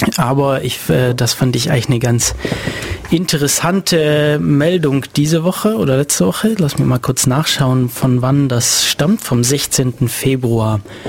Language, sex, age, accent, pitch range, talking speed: German, male, 30-49, German, 125-150 Hz, 145 wpm